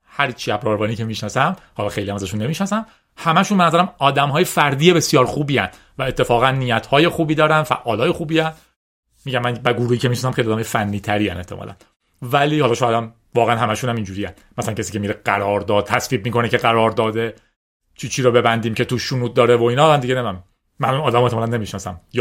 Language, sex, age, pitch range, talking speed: Persian, male, 30-49, 120-185 Hz, 195 wpm